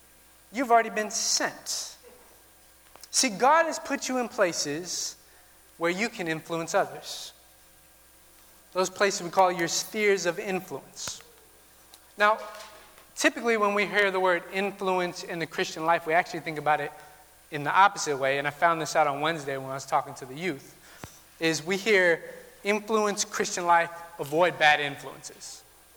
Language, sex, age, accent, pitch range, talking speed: English, male, 30-49, American, 155-230 Hz, 155 wpm